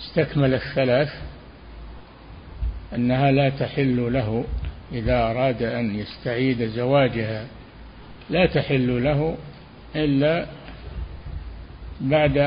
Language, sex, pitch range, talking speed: Arabic, male, 90-145 Hz, 75 wpm